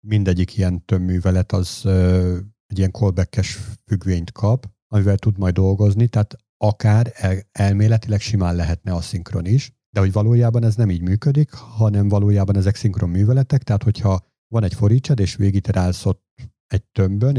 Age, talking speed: 50-69, 155 wpm